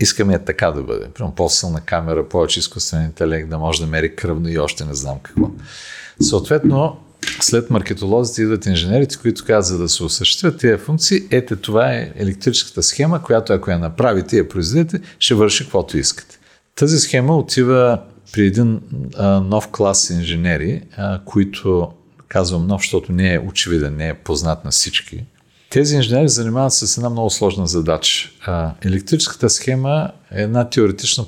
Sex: male